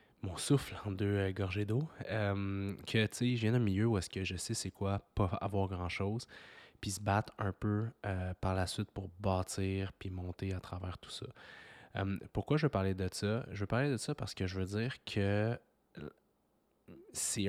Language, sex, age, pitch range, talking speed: French, male, 20-39, 95-110 Hz, 210 wpm